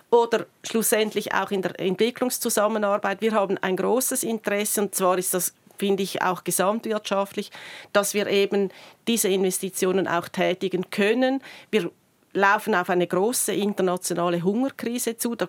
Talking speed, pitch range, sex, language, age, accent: 140 wpm, 190-220 Hz, female, German, 40-59, Austrian